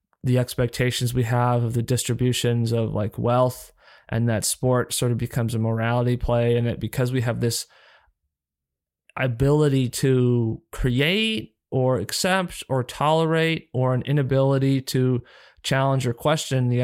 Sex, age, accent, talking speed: male, 20-39, American, 145 wpm